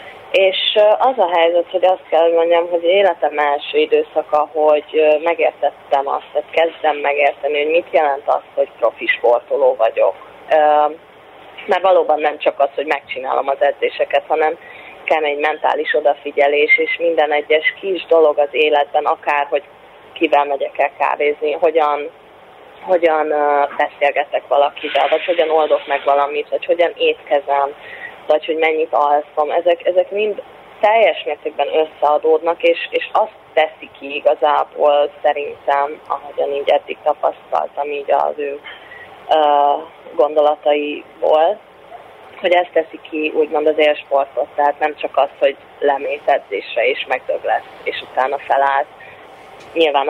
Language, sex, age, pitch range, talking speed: Hungarian, female, 20-39, 145-170 Hz, 135 wpm